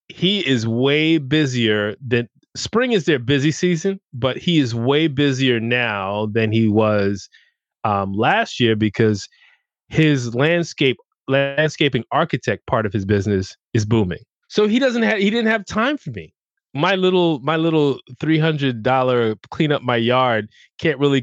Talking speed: 160 wpm